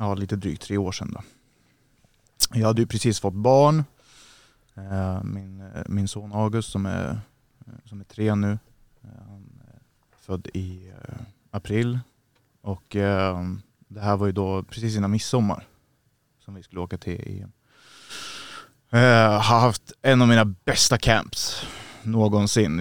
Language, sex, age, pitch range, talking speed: Swedish, male, 20-39, 100-120 Hz, 135 wpm